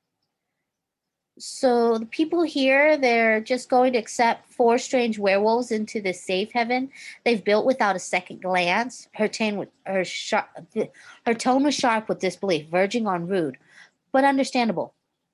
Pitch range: 170-225 Hz